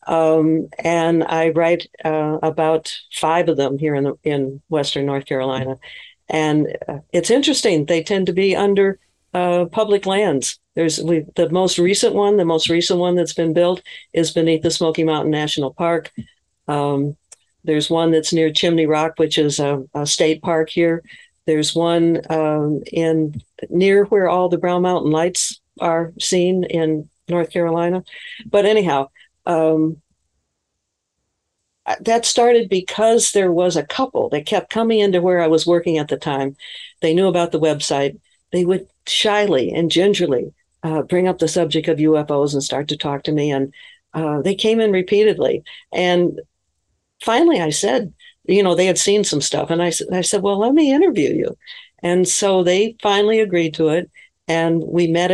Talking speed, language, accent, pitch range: 170 wpm, English, American, 155-190 Hz